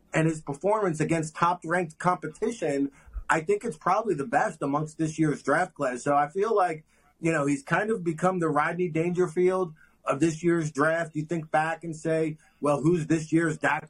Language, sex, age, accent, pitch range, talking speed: English, male, 30-49, American, 155-185 Hz, 190 wpm